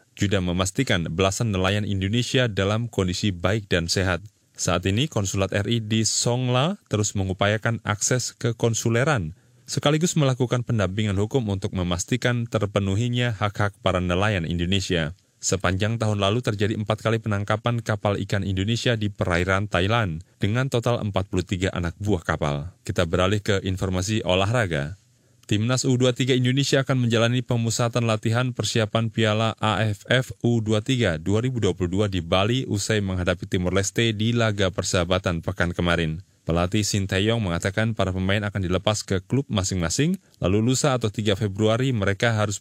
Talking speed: 135 wpm